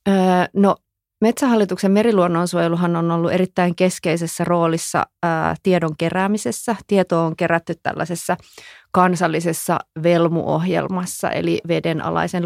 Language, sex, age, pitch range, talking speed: Finnish, female, 30-49, 165-190 Hz, 85 wpm